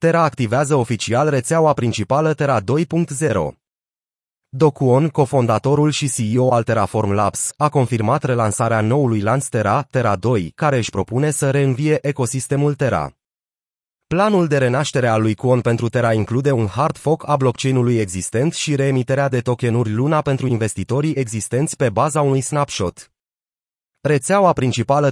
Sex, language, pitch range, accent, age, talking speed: male, Romanian, 115-145 Hz, native, 30-49, 140 wpm